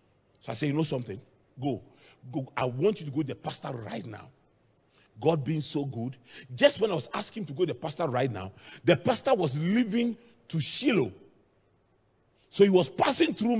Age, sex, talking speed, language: 40-59, male, 205 wpm, English